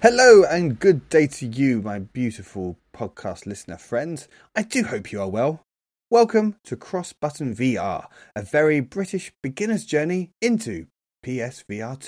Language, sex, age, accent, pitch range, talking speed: English, male, 30-49, British, 105-160 Hz, 145 wpm